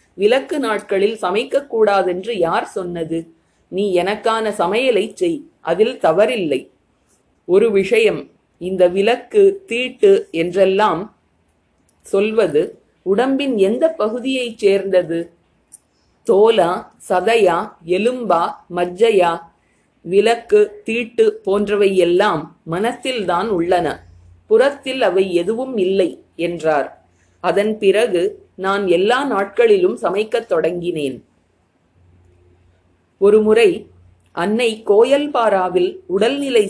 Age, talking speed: 30-49, 60 wpm